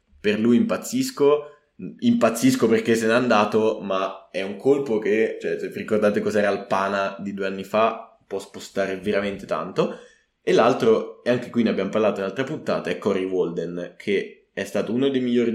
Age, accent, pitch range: 20-39, native, 105-130 Hz